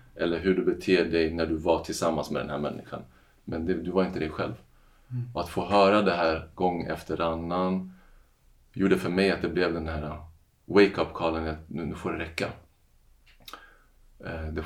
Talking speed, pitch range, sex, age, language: 190 wpm, 80-95 Hz, male, 30-49, Swedish